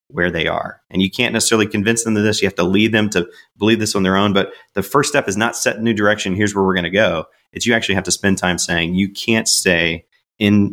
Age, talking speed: 30-49, 280 wpm